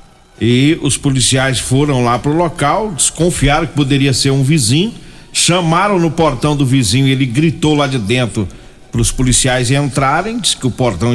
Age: 50-69